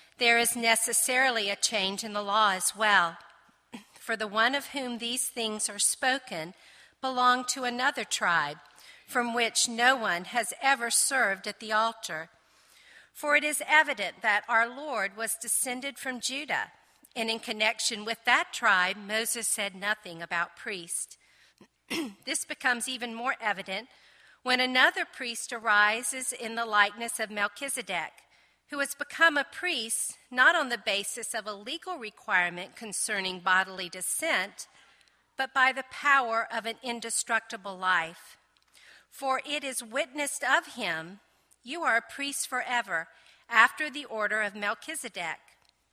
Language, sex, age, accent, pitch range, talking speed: English, female, 50-69, American, 210-265 Hz, 140 wpm